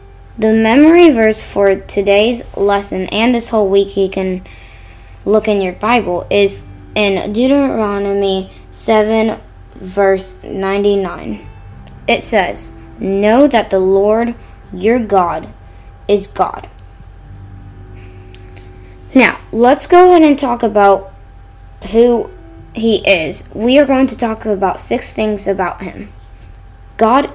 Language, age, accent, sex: English, 10-29, American, female